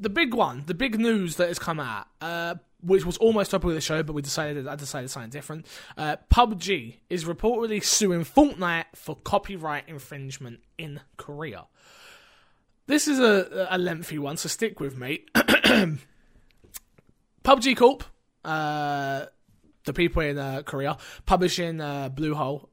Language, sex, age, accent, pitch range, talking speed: English, male, 20-39, British, 145-180 Hz, 150 wpm